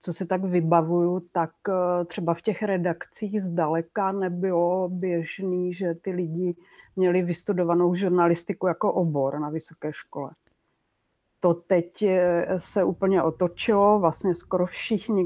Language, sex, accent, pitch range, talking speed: English, female, Czech, 165-185 Hz, 125 wpm